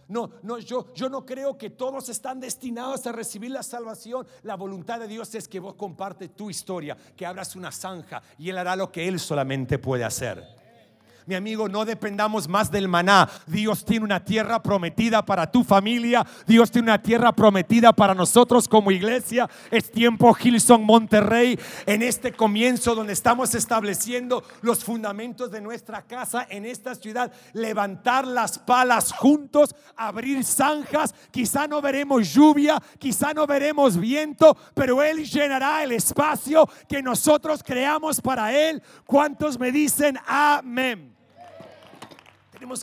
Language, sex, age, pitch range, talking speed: English, male, 50-69, 175-245 Hz, 150 wpm